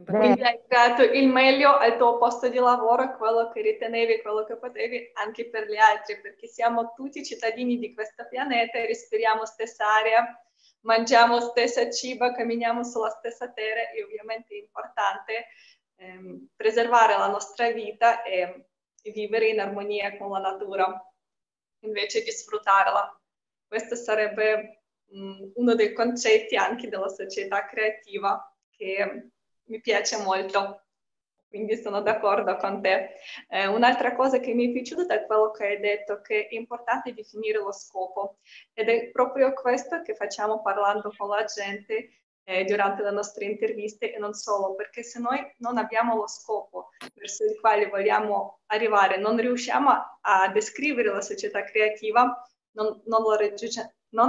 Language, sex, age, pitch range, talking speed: Italian, female, 20-39, 205-245 Hz, 145 wpm